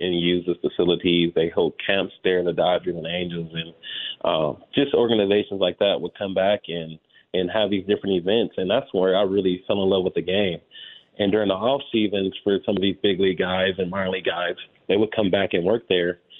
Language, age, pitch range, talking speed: English, 30-49, 95-120 Hz, 225 wpm